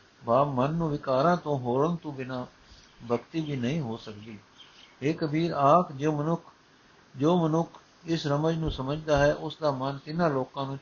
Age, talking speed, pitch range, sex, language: 60-79, 170 wpm, 130-155 Hz, male, Punjabi